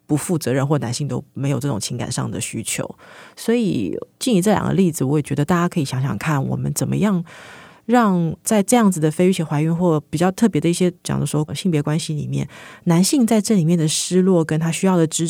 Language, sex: Chinese, female